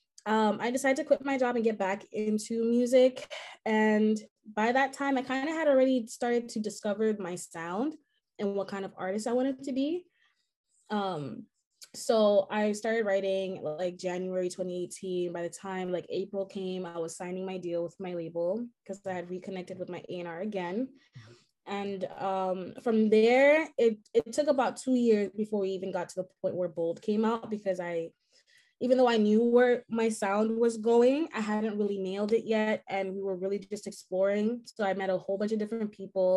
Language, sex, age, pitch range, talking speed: English, female, 20-39, 190-235 Hz, 195 wpm